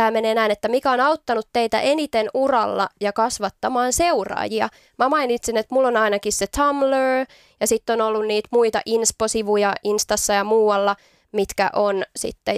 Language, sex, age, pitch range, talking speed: Finnish, female, 20-39, 205-230 Hz, 155 wpm